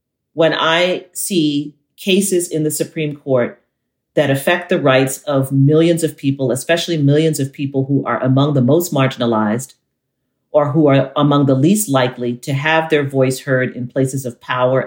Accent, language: American, English